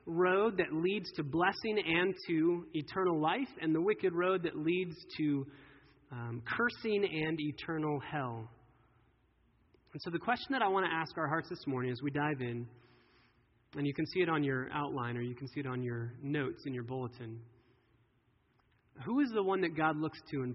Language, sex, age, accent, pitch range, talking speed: English, male, 20-39, American, 130-180 Hz, 195 wpm